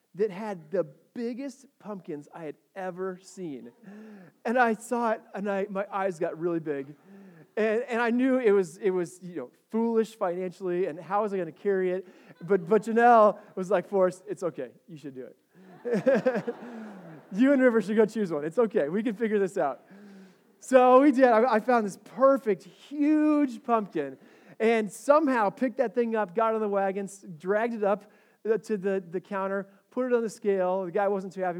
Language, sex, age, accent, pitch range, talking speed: English, male, 30-49, American, 185-230 Hz, 195 wpm